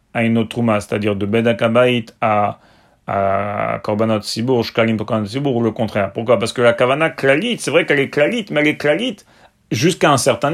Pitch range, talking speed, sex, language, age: 120-190 Hz, 175 wpm, male, French, 40-59